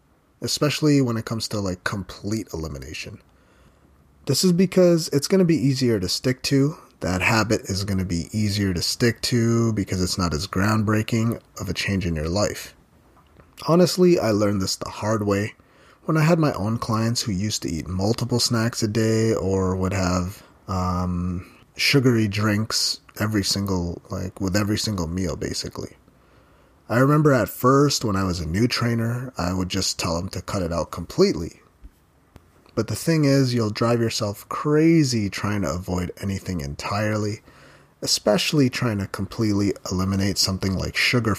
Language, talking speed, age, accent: English, 165 wpm, 30-49, American